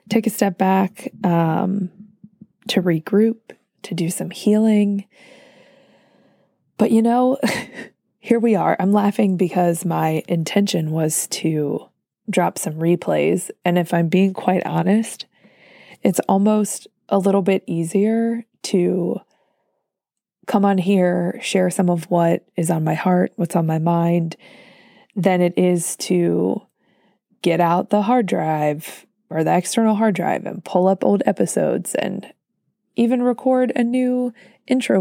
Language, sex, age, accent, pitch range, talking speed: English, female, 20-39, American, 175-225 Hz, 135 wpm